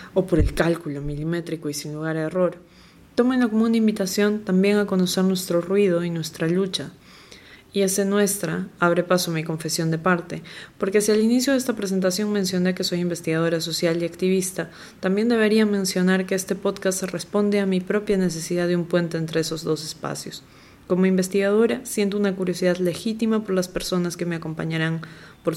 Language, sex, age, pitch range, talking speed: Spanish, female, 20-39, 170-200 Hz, 180 wpm